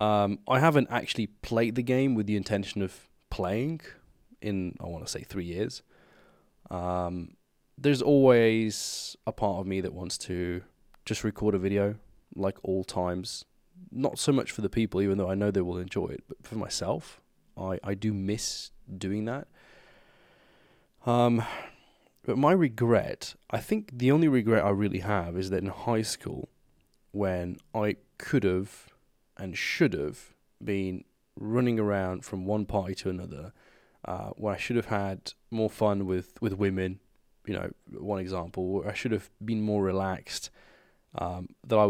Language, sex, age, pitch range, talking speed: English, male, 20-39, 95-110 Hz, 165 wpm